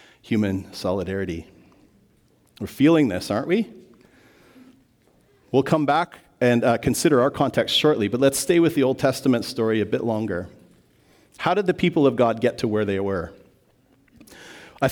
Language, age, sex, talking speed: English, 40-59, male, 155 wpm